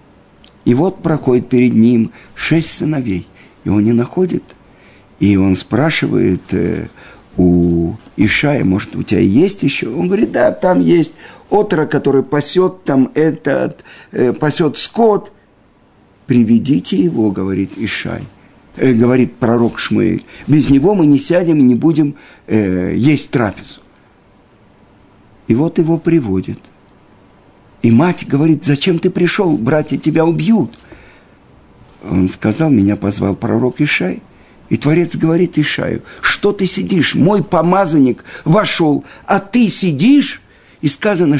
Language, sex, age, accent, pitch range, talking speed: Russian, male, 50-69, native, 115-165 Hz, 125 wpm